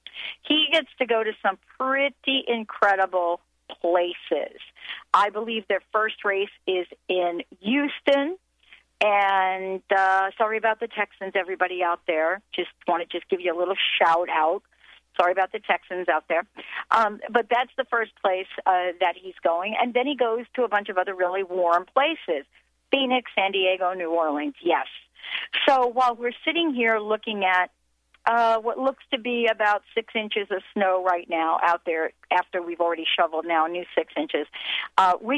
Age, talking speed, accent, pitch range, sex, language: 50-69, 175 wpm, American, 180-245 Hz, female, English